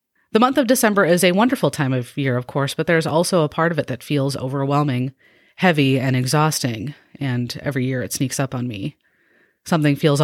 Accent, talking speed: American, 205 wpm